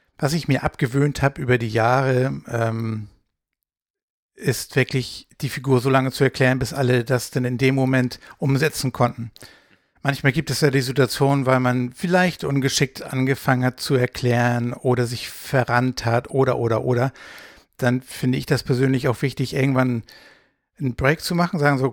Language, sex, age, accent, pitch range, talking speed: German, male, 60-79, German, 125-140 Hz, 165 wpm